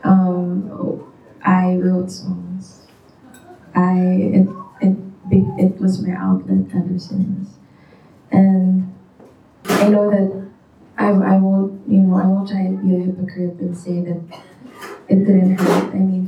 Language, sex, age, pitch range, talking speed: Filipino, female, 20-39, 185-195 Hz, 135 wpm